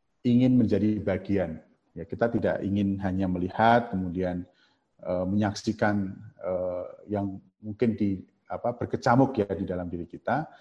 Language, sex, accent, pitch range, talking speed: Indonesian, male, native, 95-110 Hz, 130 wpm